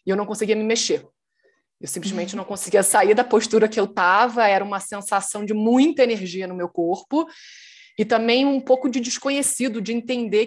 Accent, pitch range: Brazilian, 180-235 Hz